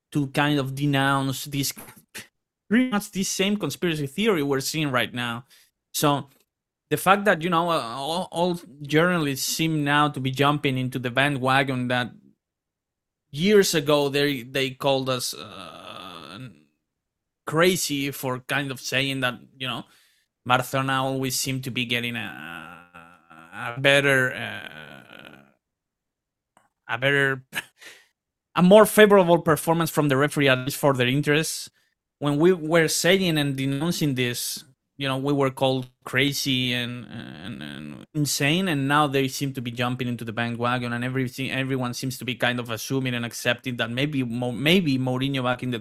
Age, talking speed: 20-39, 155 wpm